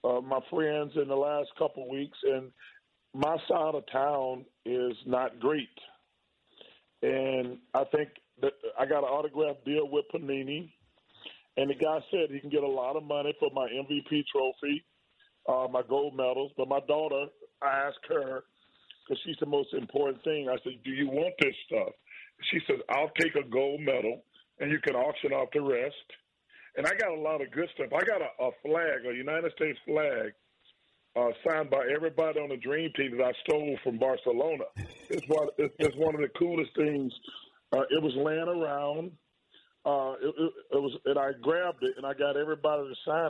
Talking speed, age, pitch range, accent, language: 190 wpm, 40-59, 135-165 Hz, American, English